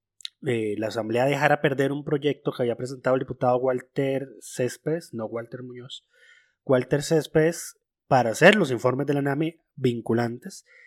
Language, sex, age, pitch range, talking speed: Spanish, male, 20-39, 125-155 Hz, 150 wpm